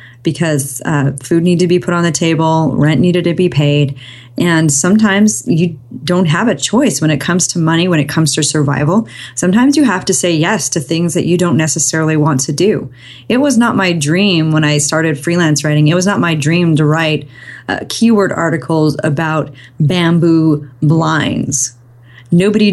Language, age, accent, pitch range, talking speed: English, 30-49, American, 150-180 Hz, 185 wpm